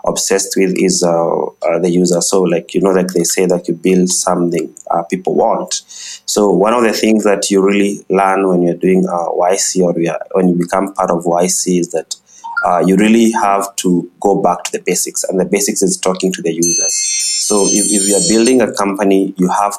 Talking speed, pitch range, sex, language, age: 220 wpm, 90-100 Hz, male, English, 30-49